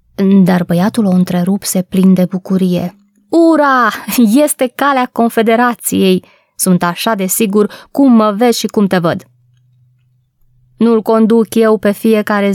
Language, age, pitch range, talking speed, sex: Romanian, 20-39, 190-245 Hz, 130 wpm, female